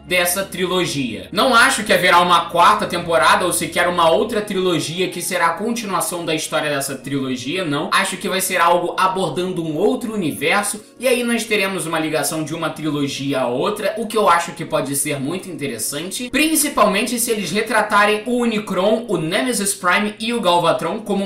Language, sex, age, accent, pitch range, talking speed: Portuguese, male, 20-39, Brazilian, 175-245 Hz, 185 wpm